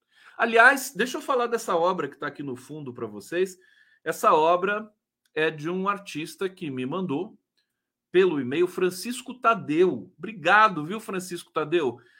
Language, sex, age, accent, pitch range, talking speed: Portuguese, male, 40-59, Brazilian, 140-195 Hz, 150 wpm